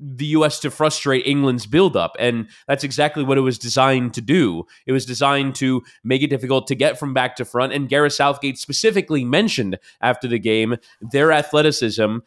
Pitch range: 125-155 Hz